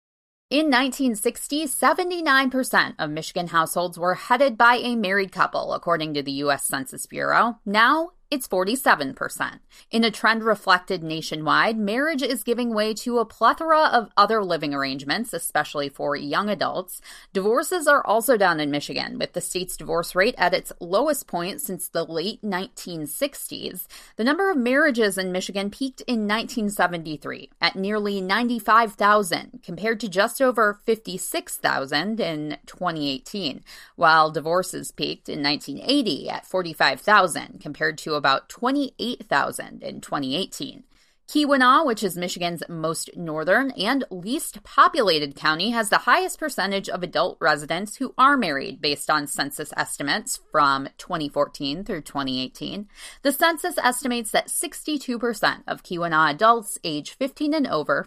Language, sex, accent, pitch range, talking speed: English, female, American, 165-250 Hz, 145 wpm